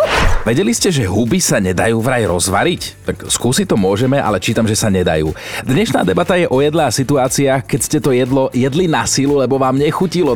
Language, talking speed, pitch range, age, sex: Slovak, 195 wpm, 100-140 Hz, 40-59, male